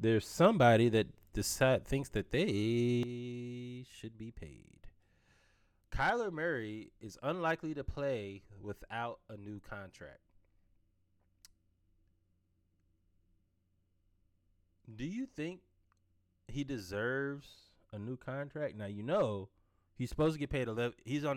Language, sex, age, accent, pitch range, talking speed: English, male, 20-39, American, 90-135 Hz, 110 wpm